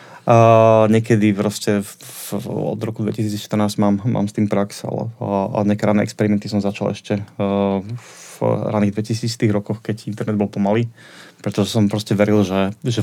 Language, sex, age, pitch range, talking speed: Czech, male, 20-39, 105-115 Hz, 160 wpm